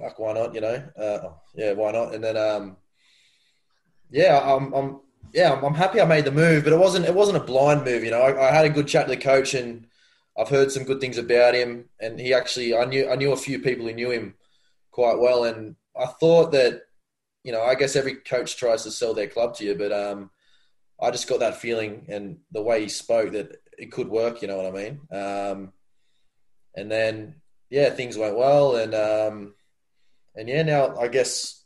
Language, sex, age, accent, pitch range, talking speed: English, male, 20-39, Australian, 110-135 Hz, 220 wpm